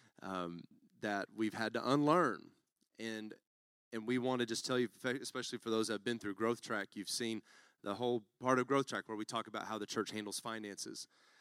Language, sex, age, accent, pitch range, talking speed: English, male, 30-49, American, 105-125 Hz, 210 wpm